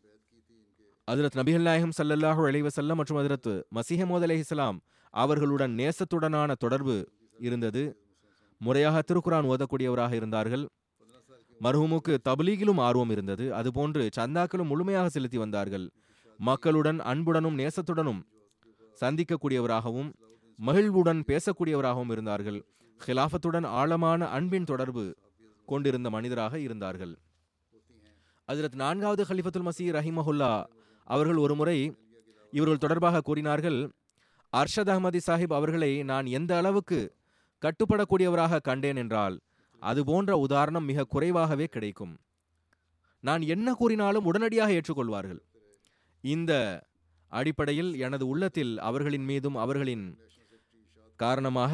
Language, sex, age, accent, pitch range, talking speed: Tamil, male, 30-49, native, 110-160 Hz, 95 wpm